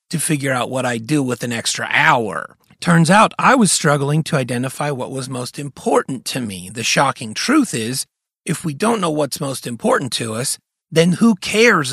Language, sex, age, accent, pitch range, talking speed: English, male, 40-59, American, 125-180 Hz, 195 wpm